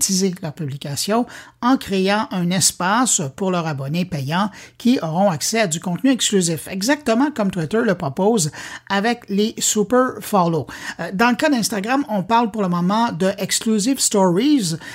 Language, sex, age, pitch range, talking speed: French, male, 50-69, 175-225 Hz, 155 wpm